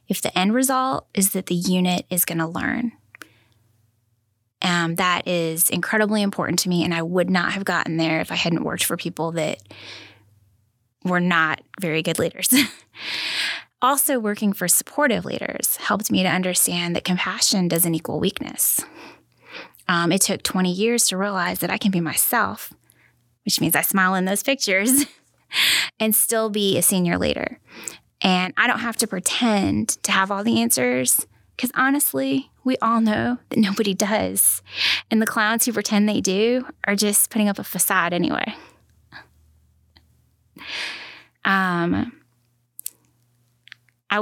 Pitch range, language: 160-210 Hz, English